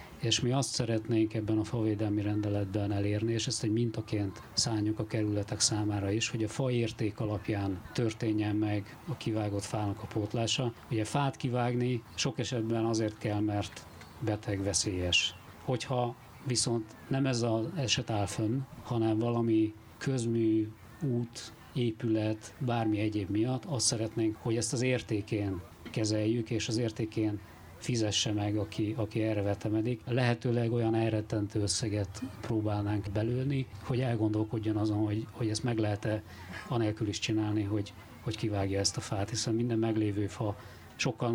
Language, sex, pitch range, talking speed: Hungarian, male, 105-120 Hz, 145 wpm